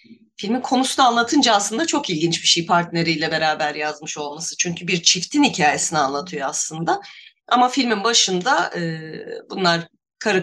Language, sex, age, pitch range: Turkish, female, 30-49, 165-240 Hz